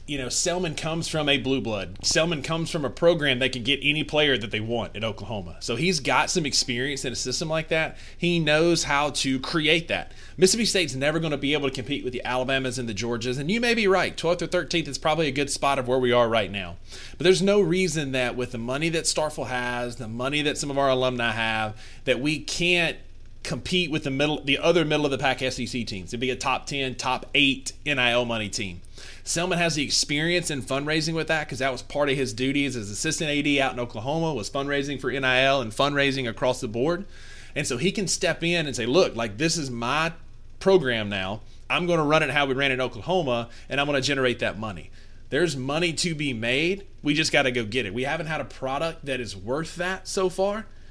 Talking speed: 240 wpm